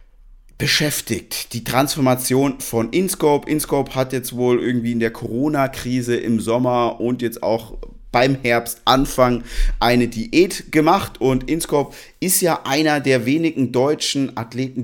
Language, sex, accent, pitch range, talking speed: German, male, German, 110-130 Hz, 130 wpm